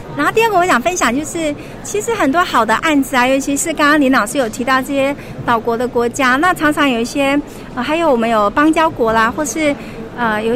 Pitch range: 240-315 Hz